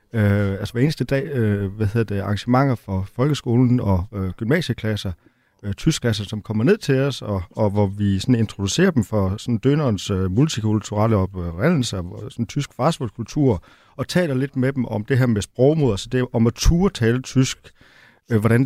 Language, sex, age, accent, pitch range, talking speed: Danish, male, 30-49, native, 105-130 Hz, 175 wpm